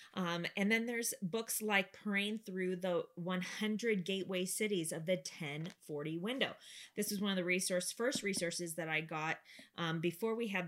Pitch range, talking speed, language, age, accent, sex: 175-220 Hz, 175 wpm, English, 20-39, American, female